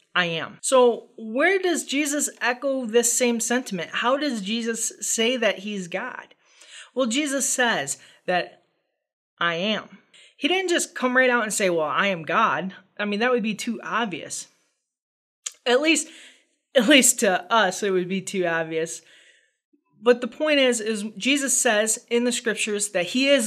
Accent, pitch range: American, 195-255 Hz